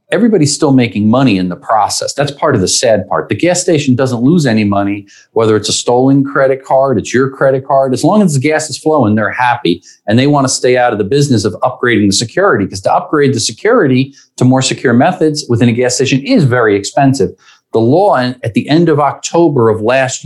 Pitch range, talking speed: 110-145 Hz, 225 wpm